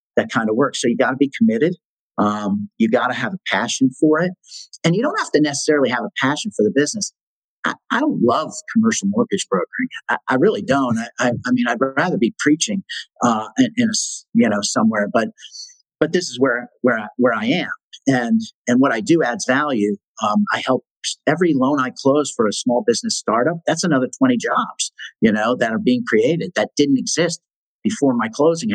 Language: English